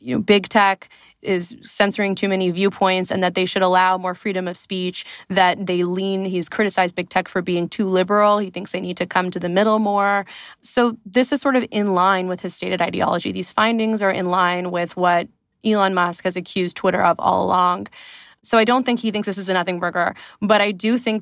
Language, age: English, 20-39